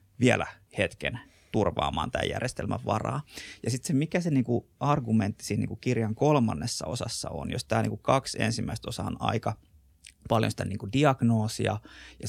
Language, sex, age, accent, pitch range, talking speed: Finnish, male, 30-49, native, 95-125 Hz, 155 wpm